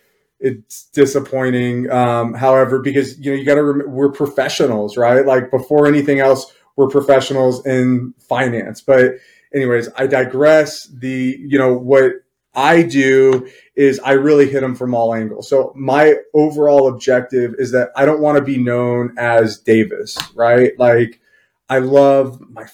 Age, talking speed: 30-49, 155 wpm